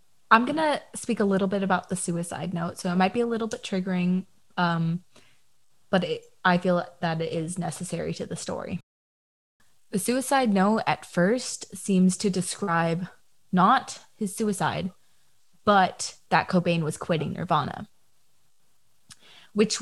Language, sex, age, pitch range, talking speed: English, female, 20-39, 170-205 Hz, 145 wpm